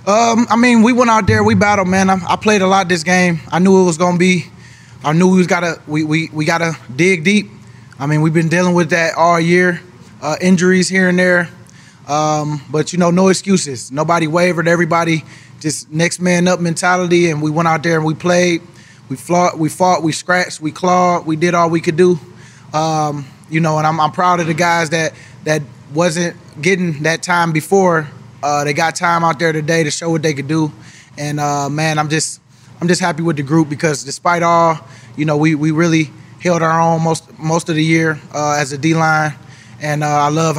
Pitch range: 150-175 Hz